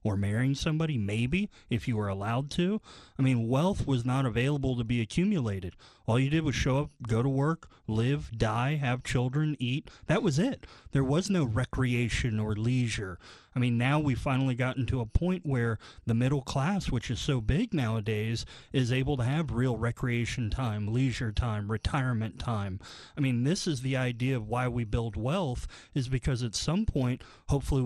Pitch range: 115-140 Hz